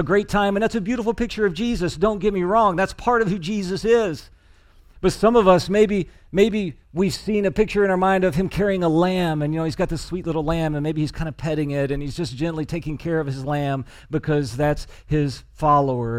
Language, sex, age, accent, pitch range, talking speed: English, male, 40-59, American, 140-190 Hz, 250 wpm